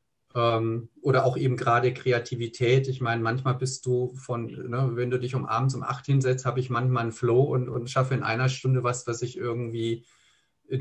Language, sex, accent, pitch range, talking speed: German, male, German, 115-130 Hz, 200 wpm